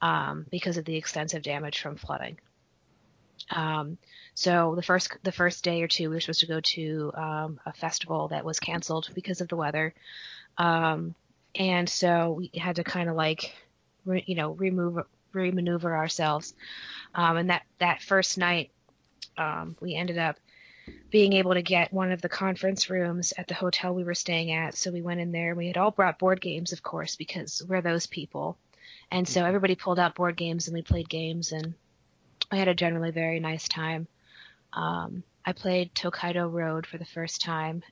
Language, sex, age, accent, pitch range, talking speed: English, female, 20-39, American, 160-180 Hz, 190 wpm